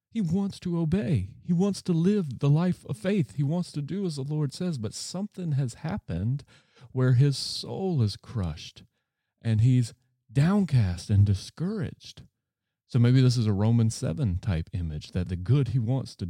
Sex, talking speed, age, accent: male, 180 wpm, 40-59, American